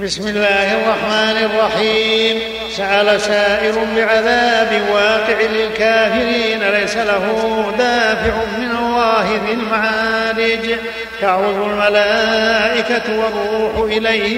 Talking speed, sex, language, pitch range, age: 85 wpm, male, Arabic, 215-225 Hz, 50-69